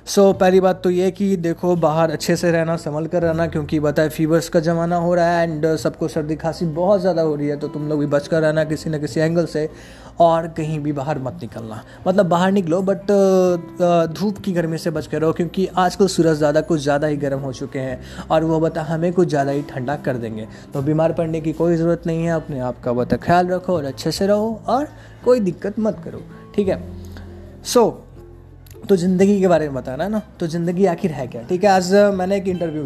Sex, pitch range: male, 155-185 Hz